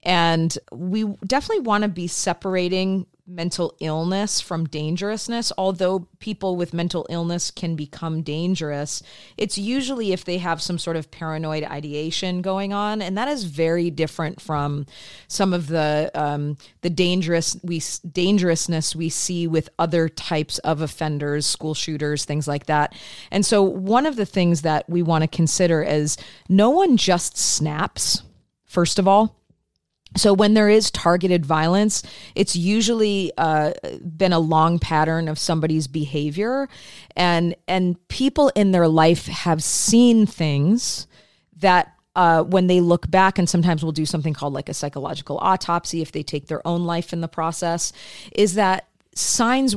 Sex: female